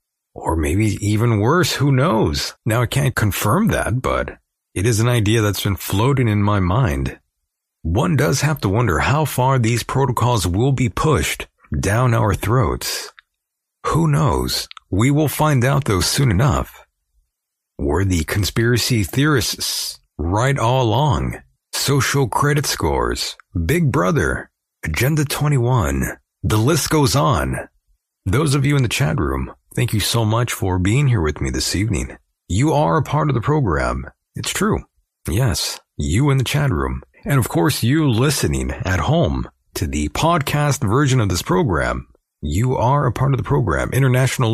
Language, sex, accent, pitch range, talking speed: English, male, American, 90-140 Hz, 160 wpm